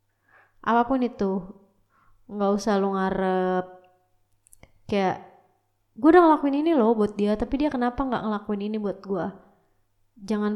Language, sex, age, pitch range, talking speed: Indonesian, female, 20-39, 180-220 Hz, 130 wpm